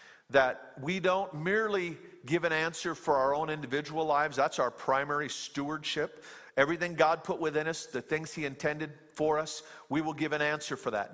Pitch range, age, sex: 145-175 Hz, 50-69, male